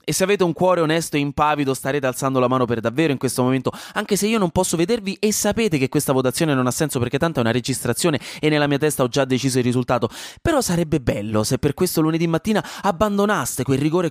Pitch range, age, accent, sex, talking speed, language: 125-185 Hz, 20-39, native, male, 240 wpm, Italian